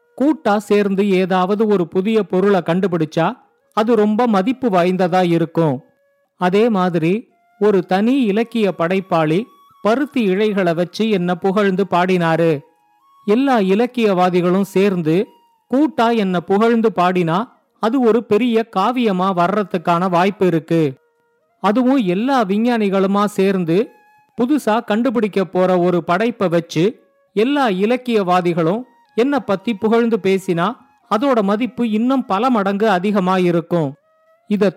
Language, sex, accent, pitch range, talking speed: Tamil, male, native, 180-230 Hz, 105 wpm